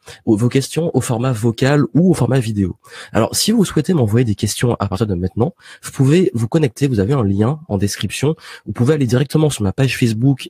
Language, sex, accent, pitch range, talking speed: French, male, French, 110-140 Hz, 215 wpm